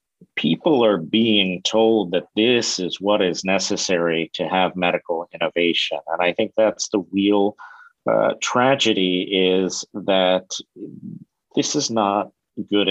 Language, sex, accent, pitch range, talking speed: English, male, American, 90-105 Hz, 130 wpm